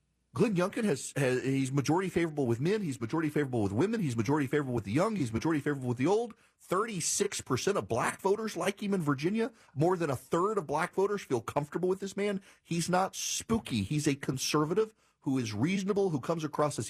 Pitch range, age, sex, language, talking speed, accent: 130-180 Hz, 40-59, male, English, 205 wpm, American